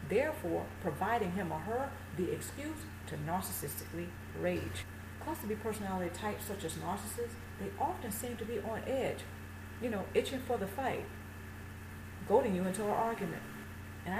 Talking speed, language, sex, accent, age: 150 wpm, English, female, American, 40-59